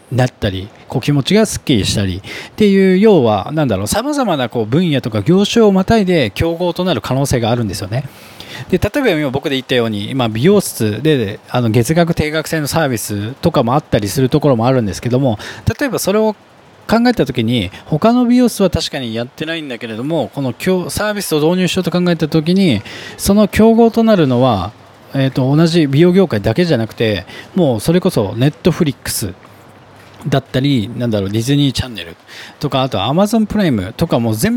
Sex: male